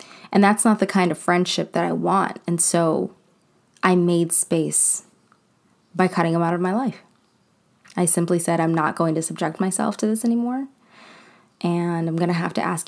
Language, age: English, 20-39